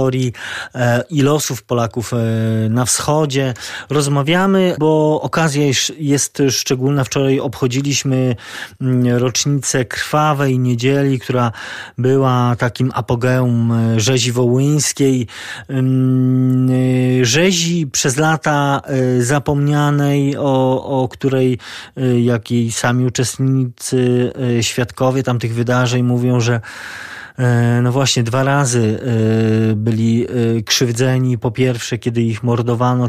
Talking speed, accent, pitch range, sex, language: 85 wpm, native, 115-135 Hz, male, Polish